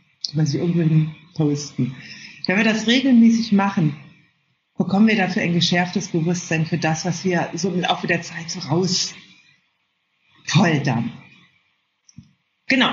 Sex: female